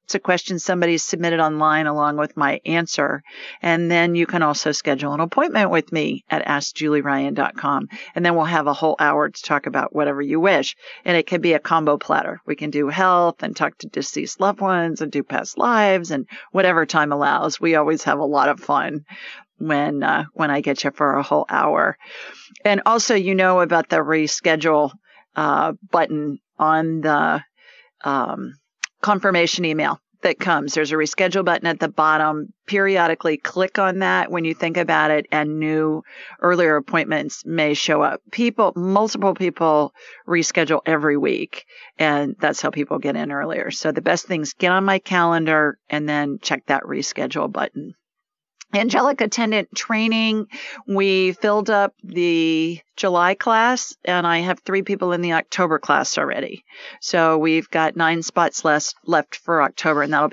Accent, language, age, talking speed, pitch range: American, English, 40-59, 170 wpm, 155-190 Hz